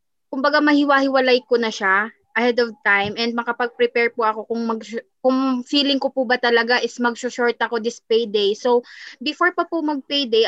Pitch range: 225-270 Hz